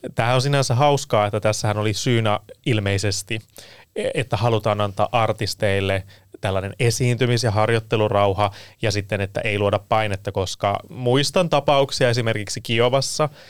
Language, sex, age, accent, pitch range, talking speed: Finnish, male, 20-39, native, 105-125 Hz, 125 wpm